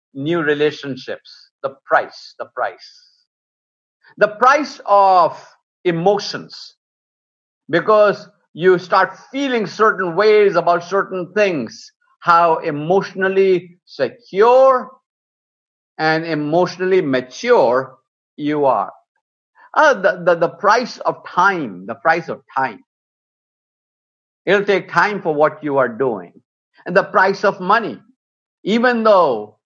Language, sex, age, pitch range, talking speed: English, male, 50-69, 155-205 Hz, 105 wpm